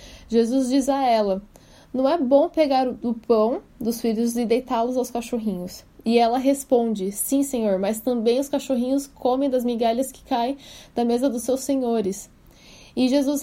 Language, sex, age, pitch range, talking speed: Portuguese, female, 10-29, 230-275 Hz, 165 wpm